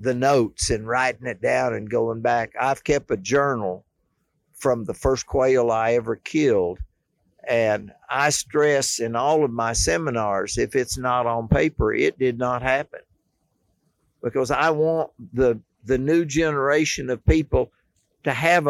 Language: English